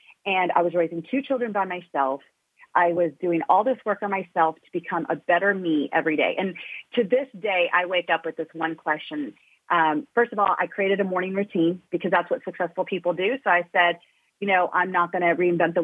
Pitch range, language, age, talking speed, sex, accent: 170-200 Hz, English, 30-49, 225 wpm, female, American